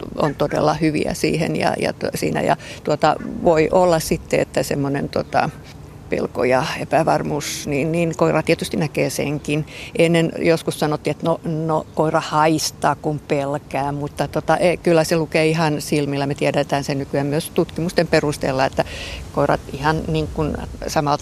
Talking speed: 150 wpm